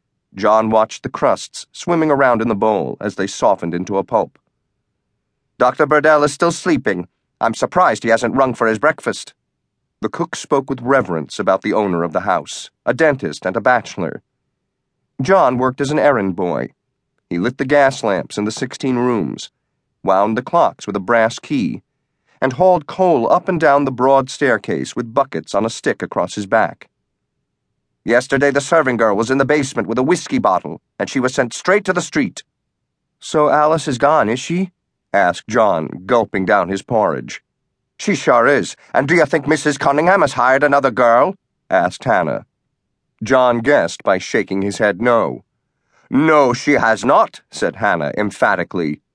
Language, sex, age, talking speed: English, male, 40-59, 175 wpm